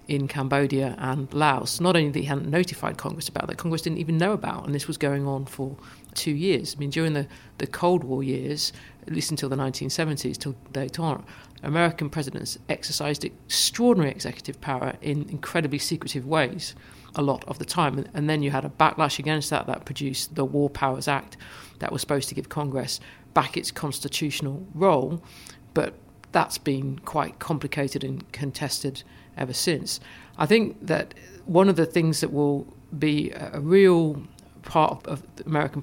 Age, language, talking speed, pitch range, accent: 50-69, English, 175 wpm, 135-155 Hz, British